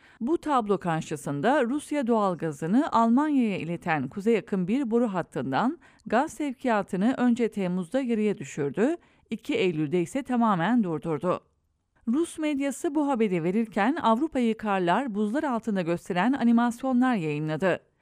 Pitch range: 185-255 Hz